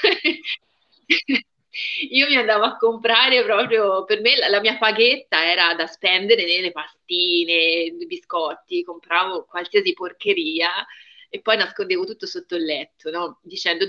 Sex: female